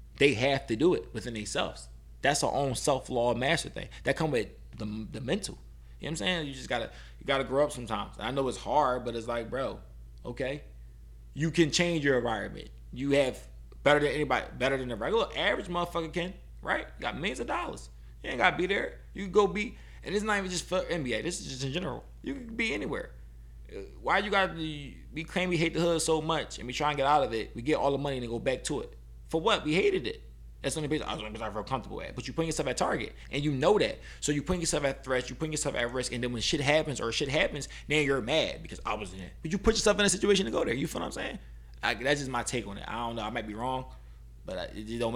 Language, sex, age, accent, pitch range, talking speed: English, male, 20-39, American, 105-155 Hz, 275 wpm